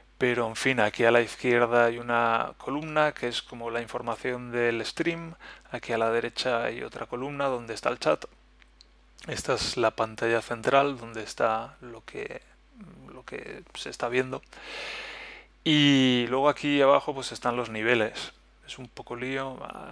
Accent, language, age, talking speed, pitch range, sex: Spanish, Spanish, 30-49, 155 wpm, 115-135 Hz, male